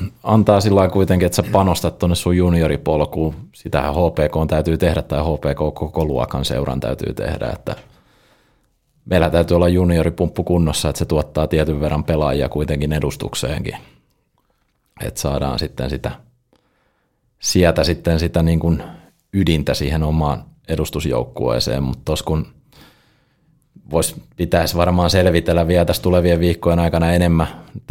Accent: native